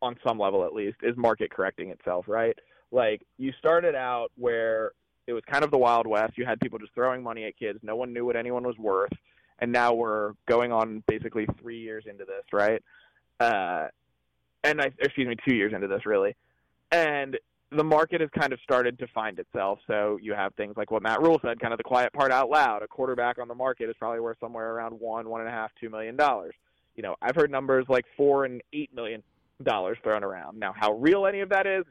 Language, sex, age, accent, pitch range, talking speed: English, male, 20-39, American, 115-140 Hz, 230 wpm